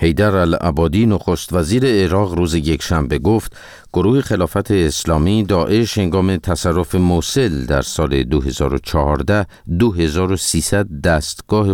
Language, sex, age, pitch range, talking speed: Persian, male, 50-69, 75-100 Hz, 100 wpm